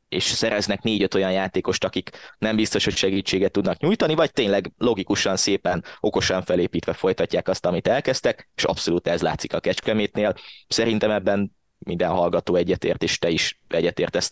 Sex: male